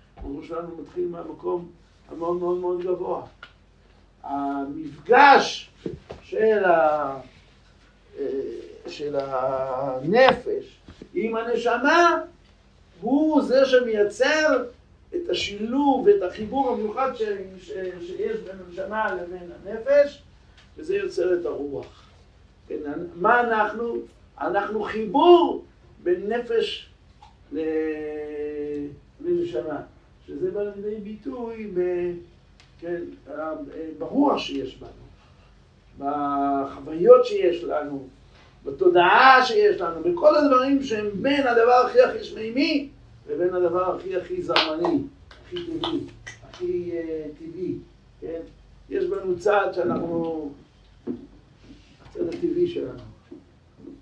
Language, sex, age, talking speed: Hebrew, male, 60-79, 90 wpm